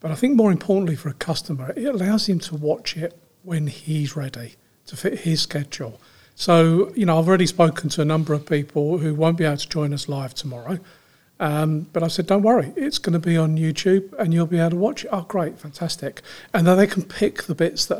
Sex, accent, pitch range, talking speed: male, British, 150-185 Hz, 235 wpm